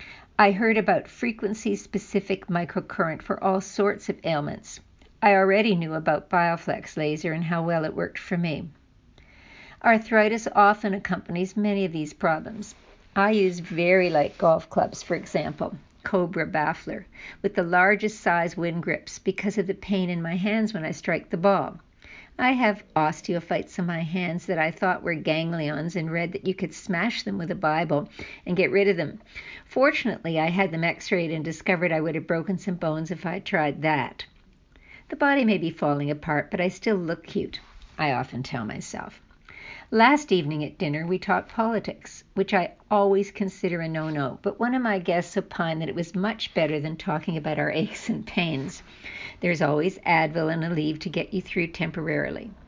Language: English